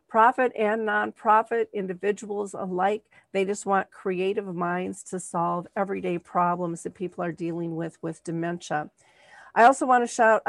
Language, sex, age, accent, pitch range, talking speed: English, female, 50-69, American, 185-215 Hz, 150 wpm